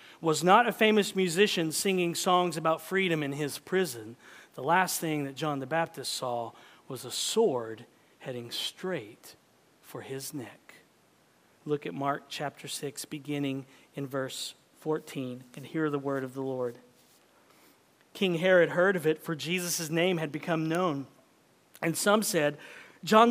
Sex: male